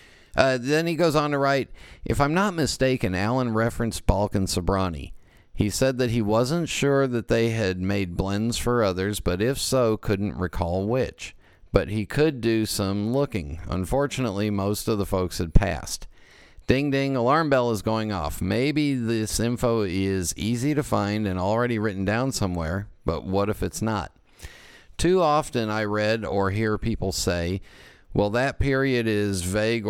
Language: English